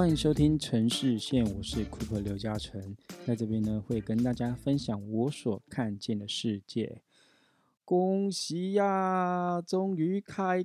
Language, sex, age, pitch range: Chinese, male, 20-39, 110-145 Hz